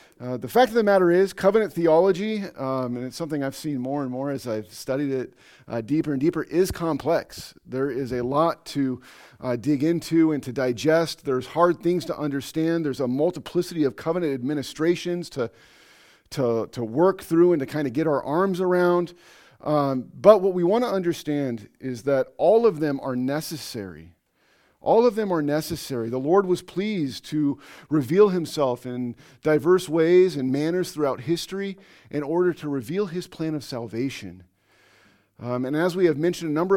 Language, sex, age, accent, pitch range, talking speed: English, male, 40-59, American, 135-175 Hz, 185 wpm